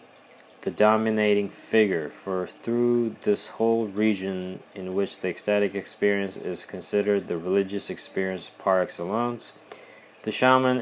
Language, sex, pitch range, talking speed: English, male, 95-115 Hz, 120 wpm